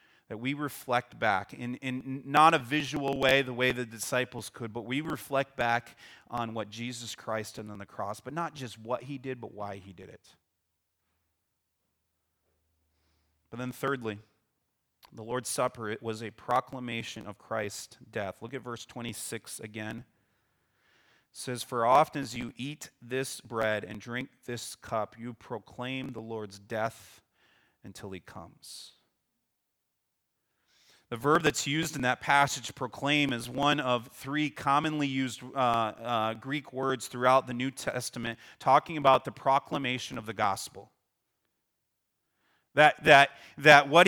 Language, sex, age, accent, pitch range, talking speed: English, male, 30-49, American, 110-140 Hz, 150 wpm